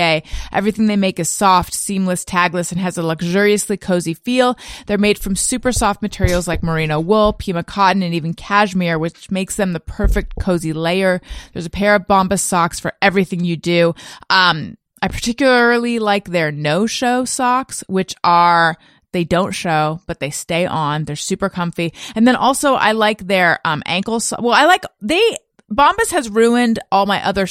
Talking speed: 180 wpm